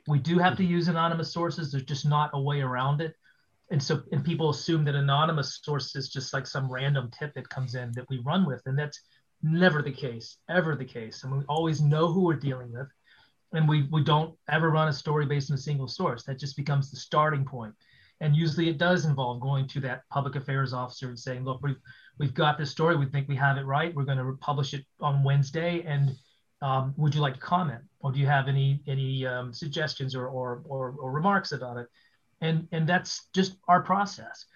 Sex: male